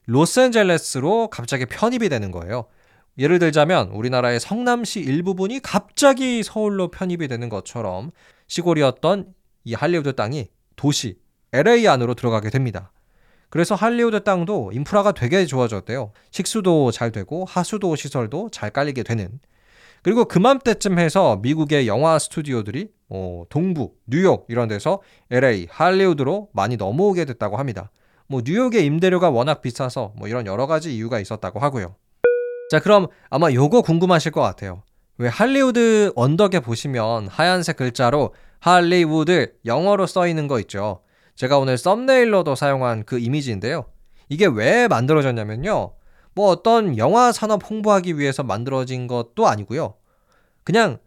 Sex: male